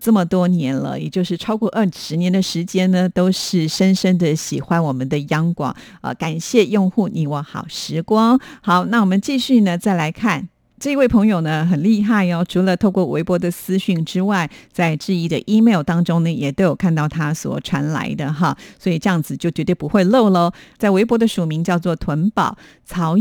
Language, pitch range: Chinese, 165-215 Hz